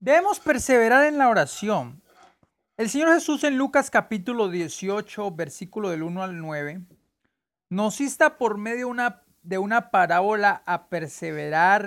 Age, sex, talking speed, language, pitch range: 40-59, male, 135 wpm, English, 165-230 Hz